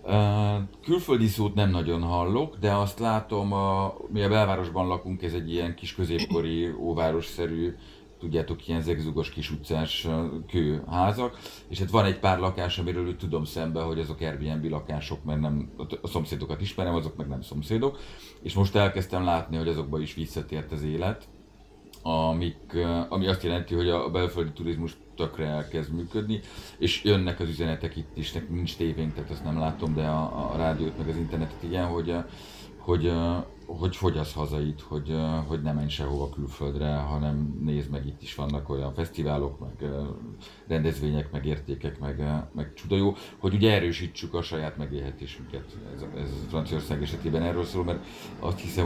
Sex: male